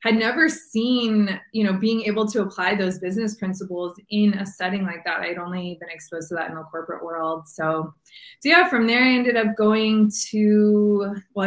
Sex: female